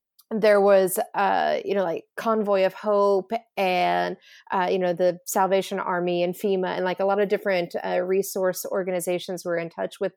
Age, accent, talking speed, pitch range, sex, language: 30-49, American, 185 wpm, 180-210 Hz, female, English